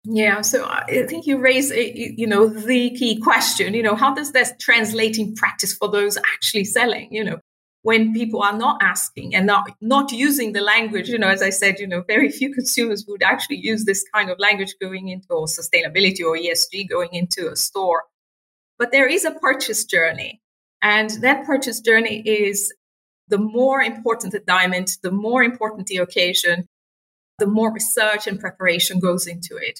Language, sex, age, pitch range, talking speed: English, female, 30-49, 195-245 Hz, 180 wpm